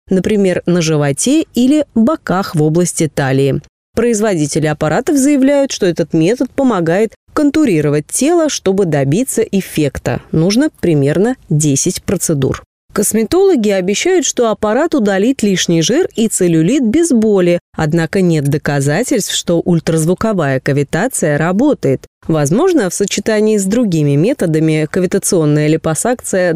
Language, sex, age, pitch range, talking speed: Russian, female, 20-39, 160-240 Hz, 115 wpm